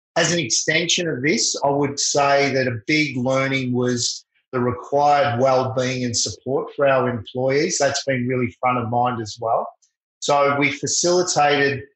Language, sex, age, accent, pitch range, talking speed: English, male, 30-49, Australian, 130-145 Hz, 160 wpm